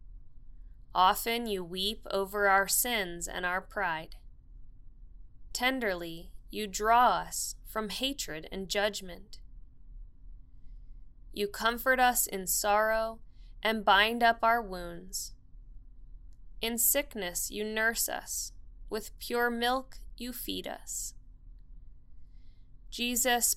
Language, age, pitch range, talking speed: English, 10-29, 175-230 Hz, 100 wpm